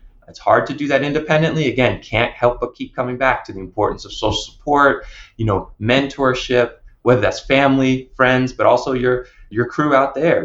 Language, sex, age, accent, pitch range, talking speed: English, male, 20-39, American, 115-140 Hz, 190 wpm